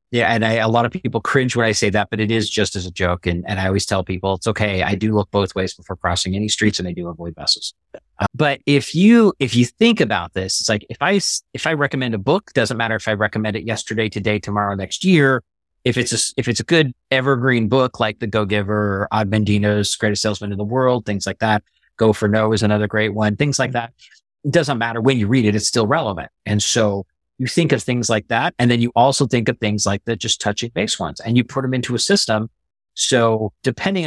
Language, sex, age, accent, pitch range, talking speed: English, male, 30-49, American, 100-120 Hz, 250 wpm